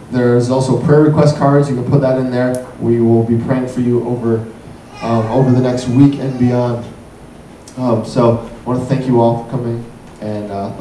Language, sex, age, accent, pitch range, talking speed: English, male, 20-39, American, 120-140 Hz, 205 wpm